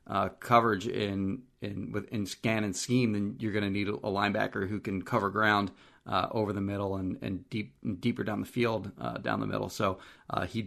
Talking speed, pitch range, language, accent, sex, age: 210 wpm, 105-130 Hz, English, American, male, 30-49